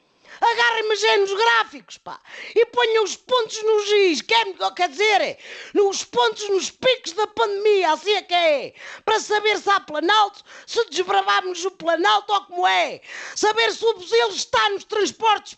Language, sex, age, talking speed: Portuguese, female, 40-59, 160 wpm